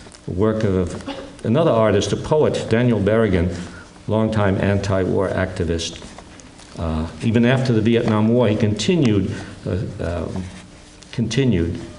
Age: 60-79